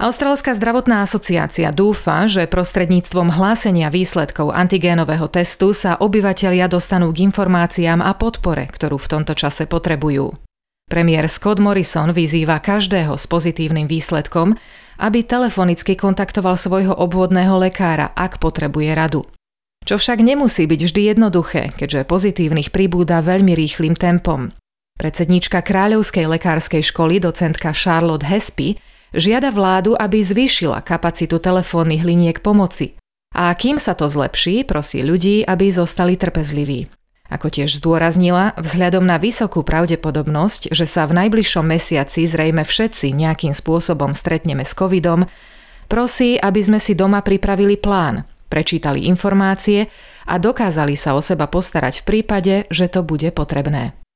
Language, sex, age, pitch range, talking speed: Slovak, female, 30-49, 160-200 Hz, 130 wpm